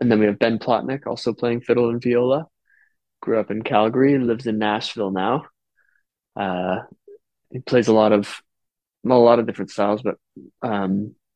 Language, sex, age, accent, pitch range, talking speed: English, male, 20-39, American, 105-125 Hz, 175 wpm